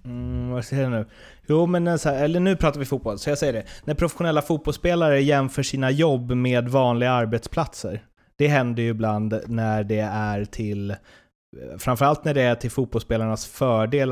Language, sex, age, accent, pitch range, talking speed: Swedish, male, 30-49, native, 110-135 Hz, 170 wpm